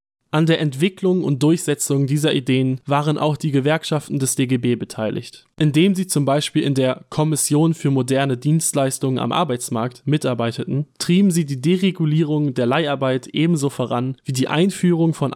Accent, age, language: German, 20-39, German